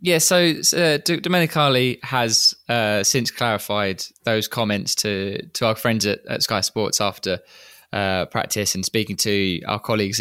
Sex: male